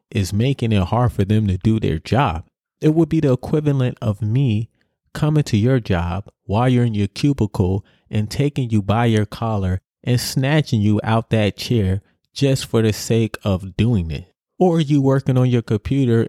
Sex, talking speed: male, 190 wpm